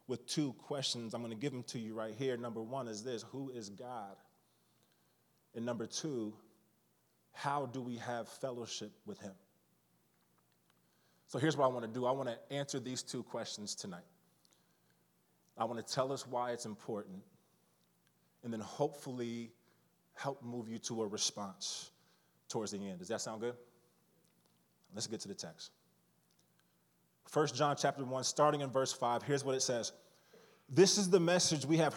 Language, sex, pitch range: English, male, 120-185 Hz